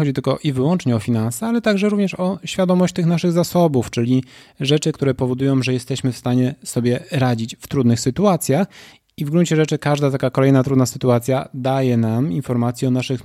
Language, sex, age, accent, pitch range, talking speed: Polish, male, 30-49, native, 130-165 Hz, 185 wpm